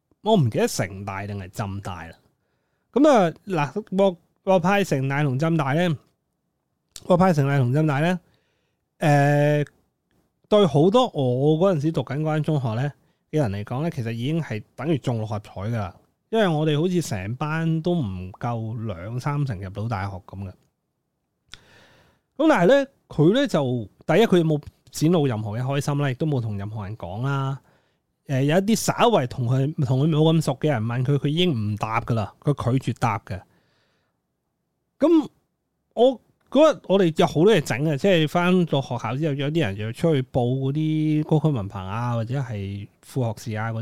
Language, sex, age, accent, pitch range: Chinese, male, 20-39, native, 115-165 Hz